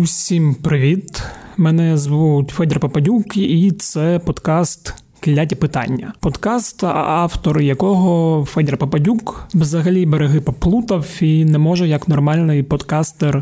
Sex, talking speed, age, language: male, 110 wpm, 30-49, Ukrainian